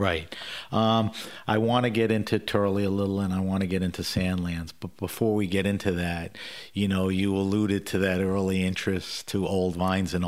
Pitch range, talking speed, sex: 90-105 Hz, 205 wpm, male